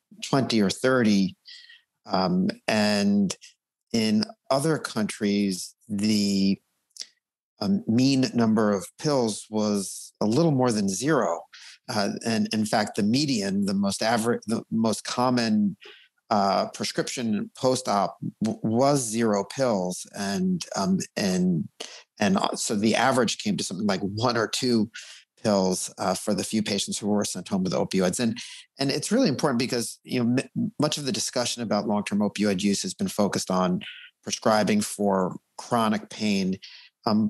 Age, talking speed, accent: 50-69, 140 wpm, American